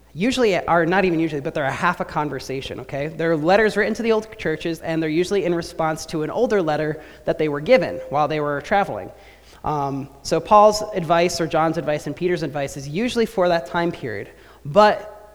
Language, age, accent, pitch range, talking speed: English, 30-49, American, 145-180 Hz, 205 wpm